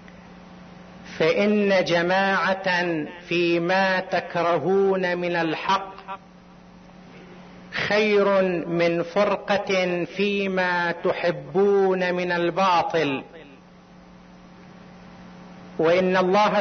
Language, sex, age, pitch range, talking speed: Arabic, male, 50-69, 175-200 Hz, 55 wpm